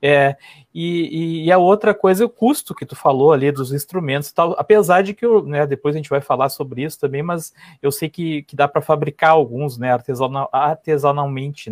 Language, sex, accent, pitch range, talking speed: Portuguese, male, Brazilian, 145-195 Hz, 215 wpm